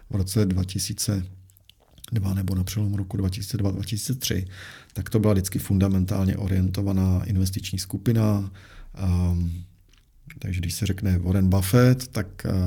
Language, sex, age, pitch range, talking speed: Czech, male, 40-59, 95-115 Hz, 110 wpm